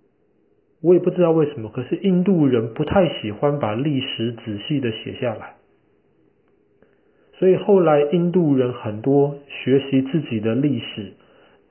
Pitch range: 115-140 Hz